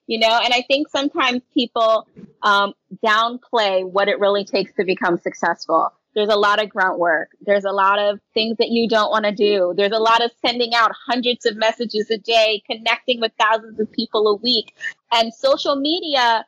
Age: 30-49